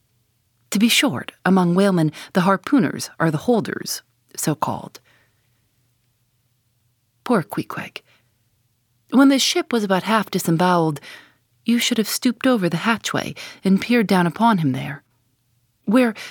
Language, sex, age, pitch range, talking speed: English, female, 40-59, 130-210 Hz, 125 wpm